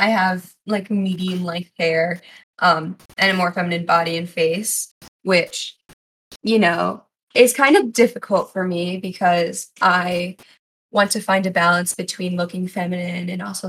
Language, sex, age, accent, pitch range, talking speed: English, female, 10-29, American, 175-205 Hz, 155 wpm